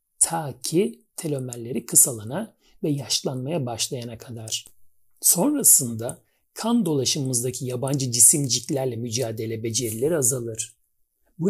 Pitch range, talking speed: 120-175 Hz, 90 wpm